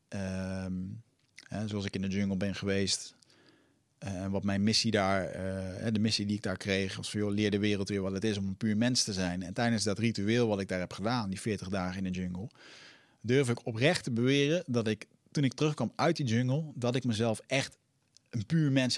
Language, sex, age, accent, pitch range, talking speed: Dutch, male, 40-59, Dutch, 95-125 Hz, 235 wpm